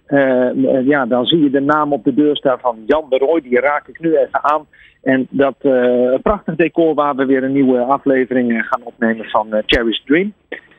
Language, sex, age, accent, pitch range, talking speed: Dutch, male, 40-59, Dutch, 130-170 Hz, 210 wpm